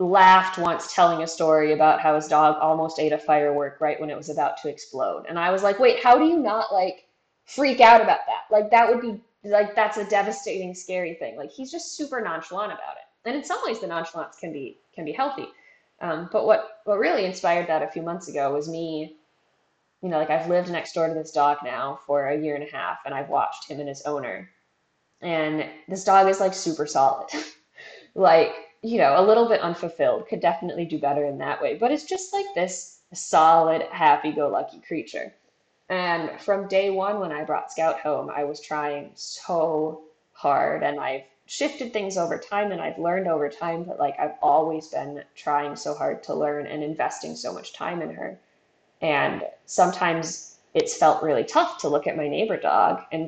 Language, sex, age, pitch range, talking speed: English, female, 10-29, 155-200 Hz, 205 wpm